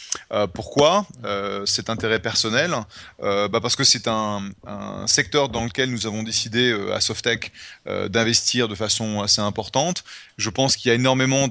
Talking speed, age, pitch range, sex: 175 wpm, 30-49, 105-125 Hz, male